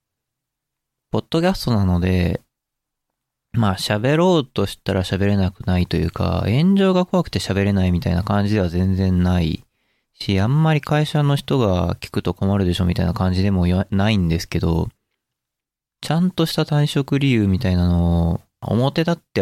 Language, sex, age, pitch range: Japanese, male, 20-39, 90-125 Hz